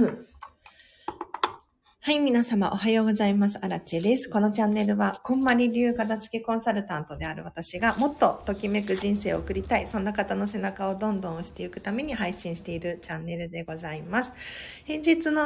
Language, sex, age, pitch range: Japanese, female, 40-59, 170-230 Hz